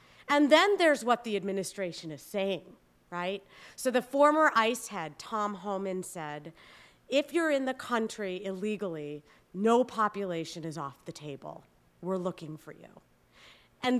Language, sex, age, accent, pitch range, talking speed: English, female, 40-59, American, 180-255 Hz, 145 wpm